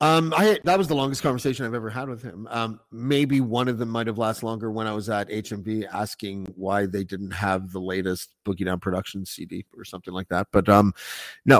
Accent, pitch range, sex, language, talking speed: American, 110-135 Hz, male, English, 225 wpm